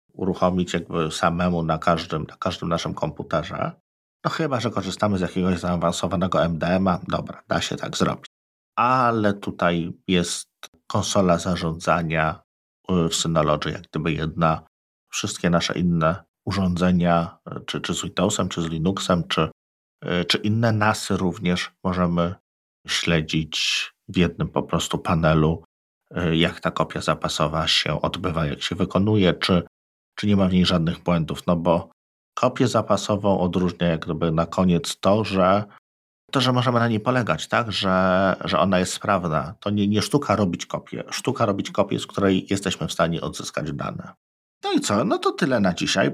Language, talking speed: Polish, 155 wpm